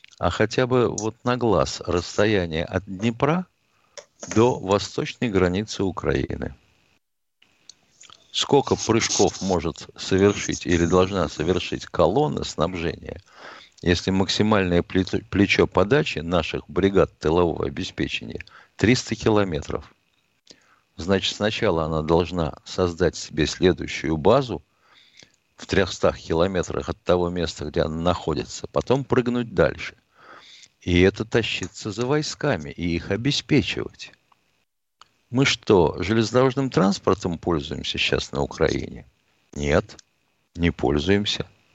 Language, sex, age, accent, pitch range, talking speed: Russian, male, 50-69, native, 90-120 Hz, 100 wpm